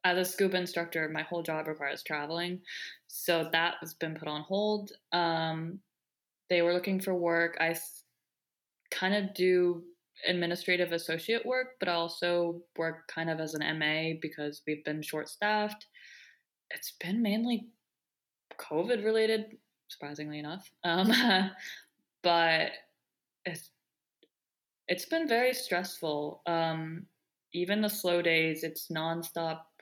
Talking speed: 125 wpm